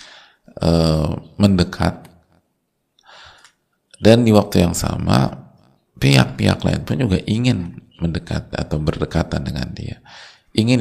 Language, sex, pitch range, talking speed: Indonesian, male, 80-100 Hz, 100 wpm